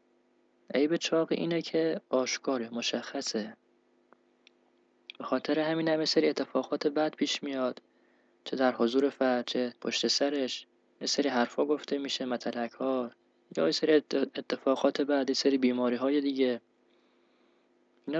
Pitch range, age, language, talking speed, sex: 125-150 Hz, 20-39, Persian, 125 wpm, male